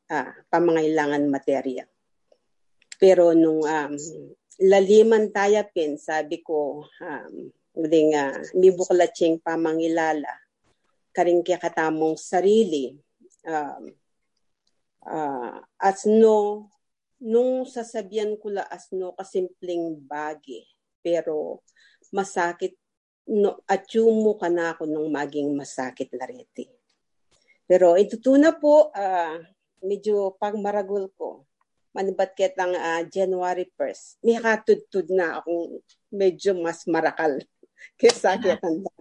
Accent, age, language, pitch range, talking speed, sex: Filipino, 50-69, English, 160-210 Hz, 100 wpm, female